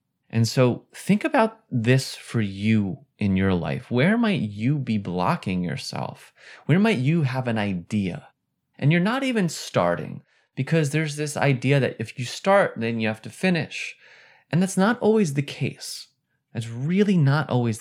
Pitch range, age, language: 105-145 Hz, 30-49, English